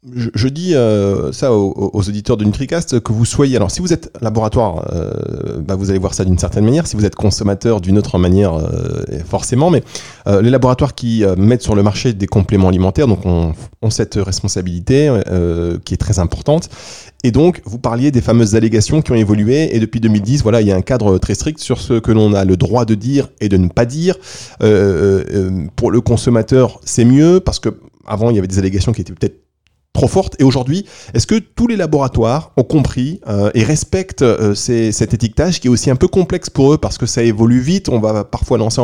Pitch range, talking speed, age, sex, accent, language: 100-130 Hz, 225 wpm, 30-49, male, French, French